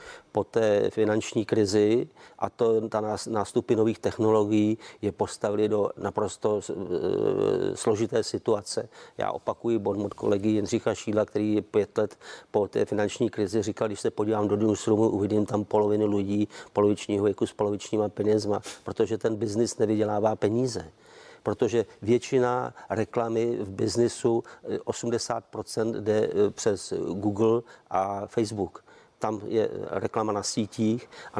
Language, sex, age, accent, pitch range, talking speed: Czech, male, 50-69, native, 105-115 Hz, 130 wpm